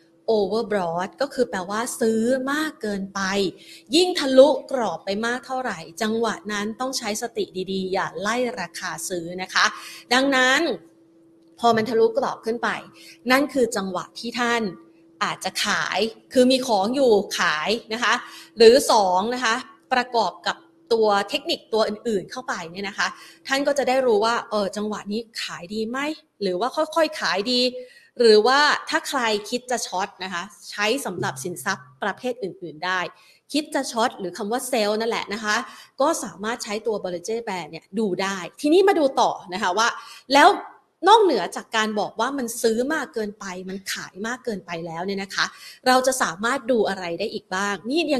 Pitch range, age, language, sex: 190-255 Hz, 30-49, Thai, female